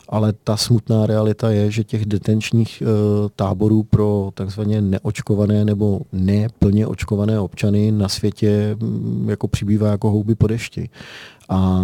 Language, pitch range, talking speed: Czech, 100-110 Hz, 120 wpm